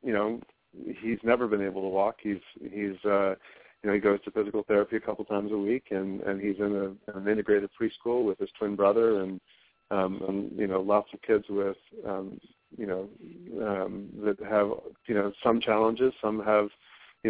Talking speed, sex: 200 wpm, male